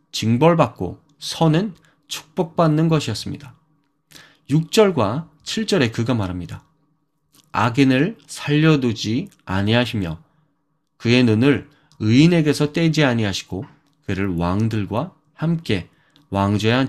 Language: Korean